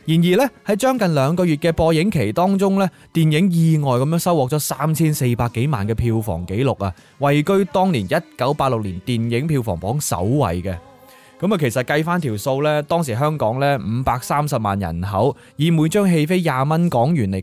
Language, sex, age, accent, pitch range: Chinese, male, 20-39, native, 115-165 Hz